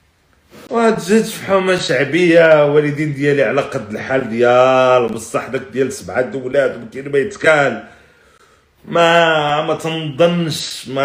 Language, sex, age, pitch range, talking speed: Arabic, male, 40-59, 125-170 Hz, 120 wpm